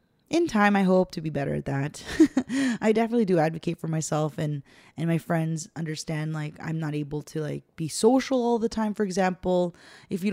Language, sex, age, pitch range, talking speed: English, female, 20-39, 160-190 Hz, 205 wpm